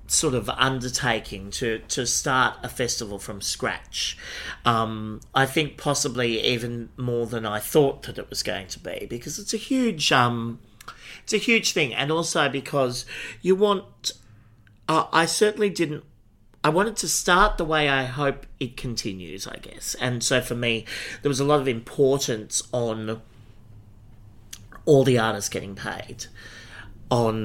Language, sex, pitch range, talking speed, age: English, male, 110-140 Hz, 155 wpm, 40-59